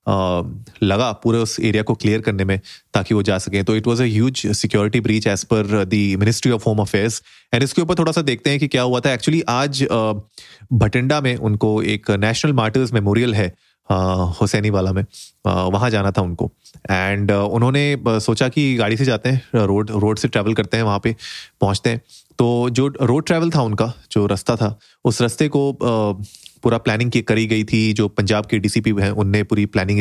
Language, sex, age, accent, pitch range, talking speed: Hindi, male, 30-49, native, 105-125 Hz, 195 wpm